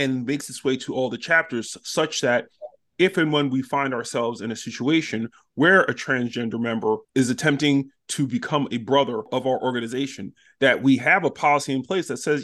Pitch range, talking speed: 130-170 Hz, 200 wpm